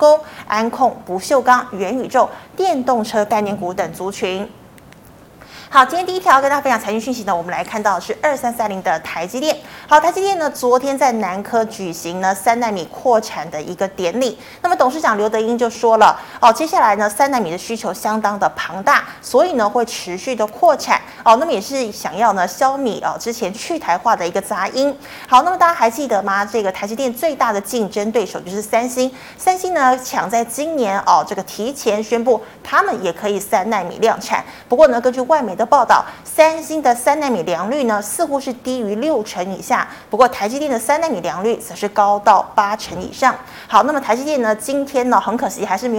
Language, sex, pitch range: Chinese, female, 205-270 Hz